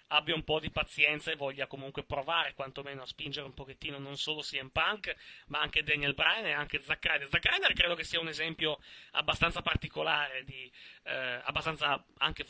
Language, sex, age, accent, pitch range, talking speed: Italian, male, 30-49, native, 140-180 Hz, 185 wpm